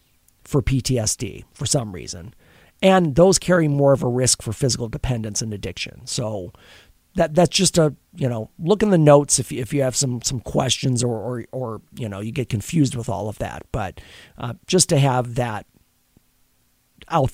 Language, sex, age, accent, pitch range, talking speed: English, male, 40-59, American, 120-170 Hz, 190 wpm